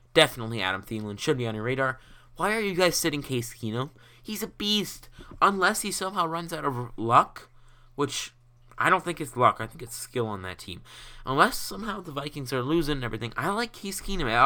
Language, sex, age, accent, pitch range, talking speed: English, male, 20-39, American, 115-145 Hz, 210 wpm